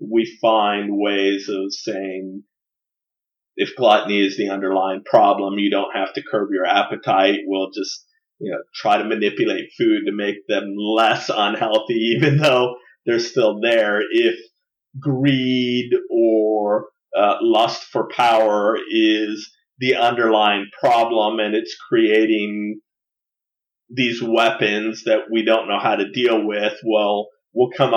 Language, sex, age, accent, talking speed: English, male, 30-49, American, 135 wpm